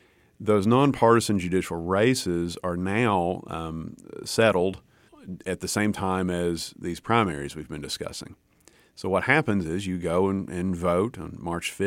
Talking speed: 145 wpm